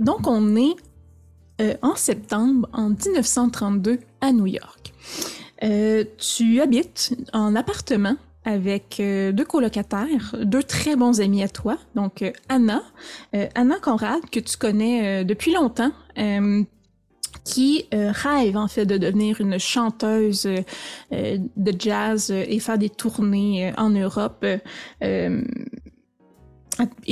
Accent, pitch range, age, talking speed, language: Canadian, 205-250 Hz, 20-39, 135 wpm, French